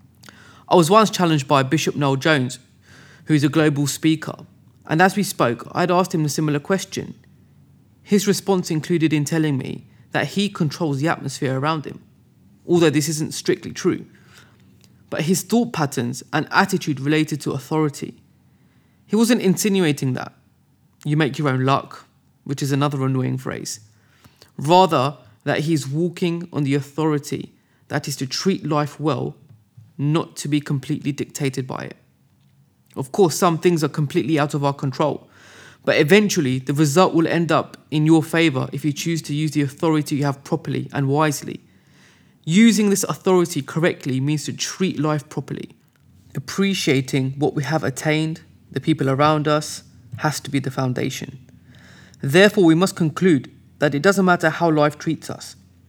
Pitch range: 140-165 Hz